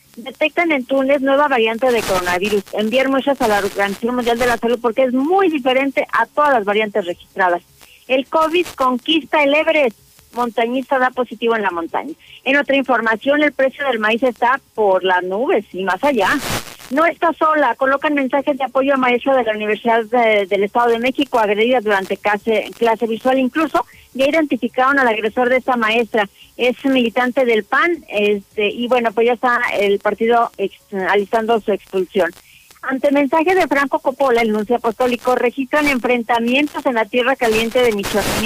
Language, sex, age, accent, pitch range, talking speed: Spanish, female, 40-59, Mexican, 215-275 Hz, 170 wpm